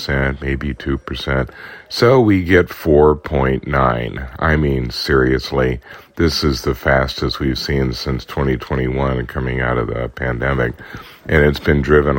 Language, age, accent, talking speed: English, 40-59, American, 155 wpm